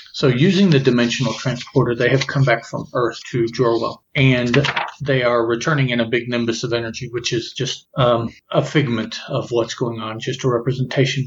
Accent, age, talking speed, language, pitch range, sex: American, 40-59, 190 wpm, English, 120-140 Hz, male